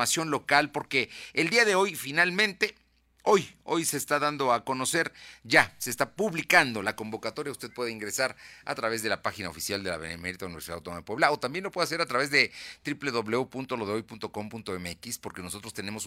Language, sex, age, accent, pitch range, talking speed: Spanish, male, 40-59, Mexican, 95-130 Hz, 180 wpm